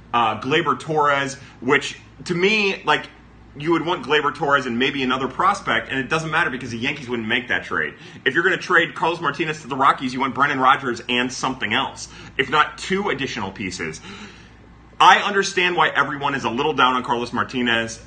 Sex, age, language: male, 30-49, English